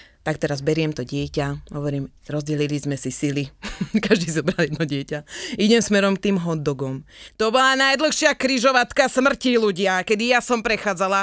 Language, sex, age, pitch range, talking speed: Slovak, female, 30-49, 165-255 Hz, 155 wpm